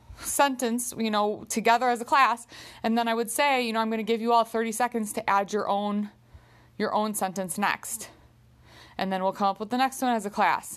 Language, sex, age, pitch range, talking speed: English, female, 30-49, 190-235 Hz, 230 wpm